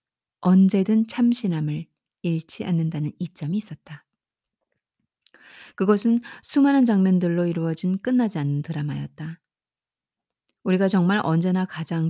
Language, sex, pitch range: Korean, female, 160-215 Hz